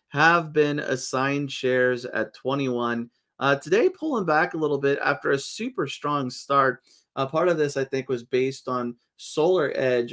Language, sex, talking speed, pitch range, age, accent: English, male, 165 wpm, 115-135 Hz, 30-49, American